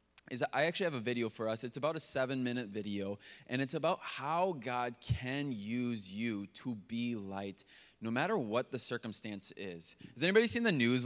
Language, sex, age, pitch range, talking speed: English, male, 20-39, 100-130 Hz, 190 wpm